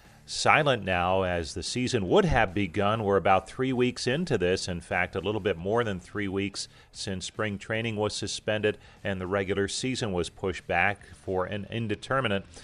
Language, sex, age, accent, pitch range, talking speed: English, male, 40-59, American, 95-115 Hz, 180 wpm